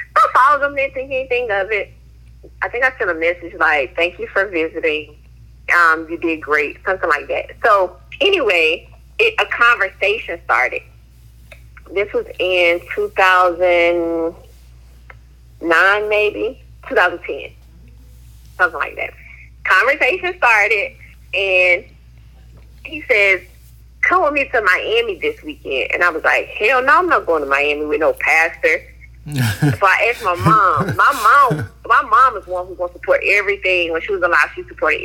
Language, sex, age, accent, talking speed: English, female, 30-49, American, 155 wpm